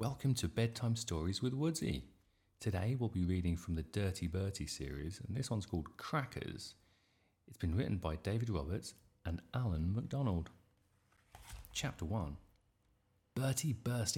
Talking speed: 140 wpm